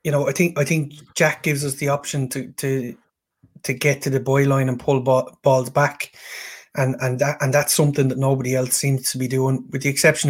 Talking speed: 235 wpm